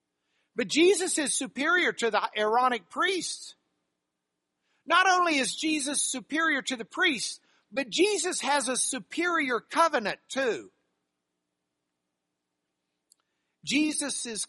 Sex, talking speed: male, 100 wpm